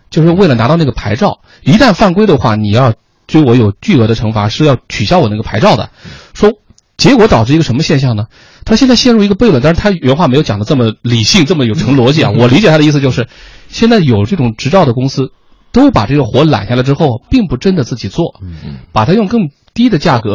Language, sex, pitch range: Chinese, male, 115-175 Hz